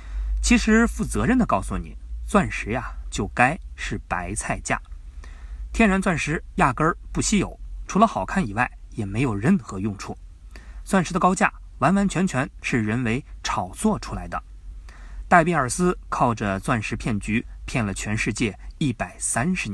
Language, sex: Chinese, male